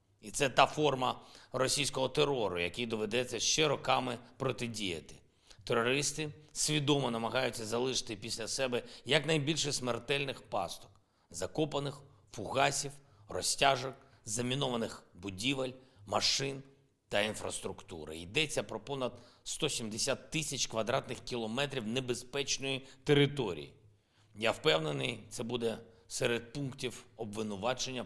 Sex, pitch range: male, 110-135 Hz